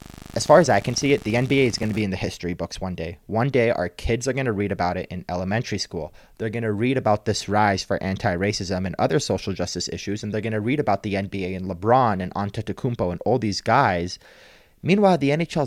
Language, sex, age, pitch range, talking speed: English, male, 30-49, 95-120 Hz, 250 wpm